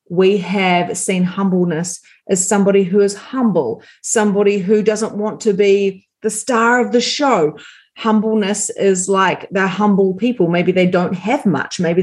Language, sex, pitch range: English, female, 175-220 Hz